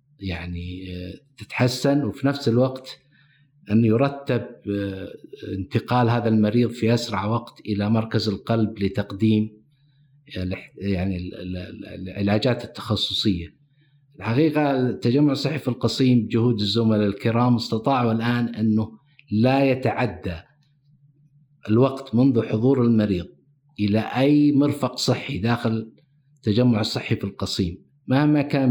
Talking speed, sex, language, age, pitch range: 100 wpm, male, Arabic, 50-69, 110-140 Hz